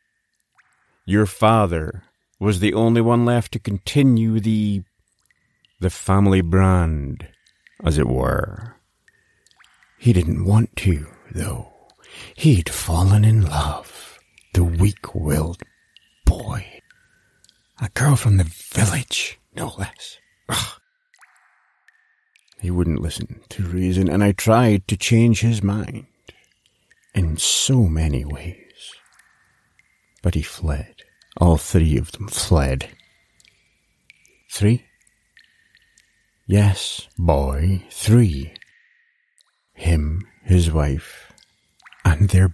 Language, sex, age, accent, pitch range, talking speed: English, male, 50-69, American, 85-115 Hz, 95 wpm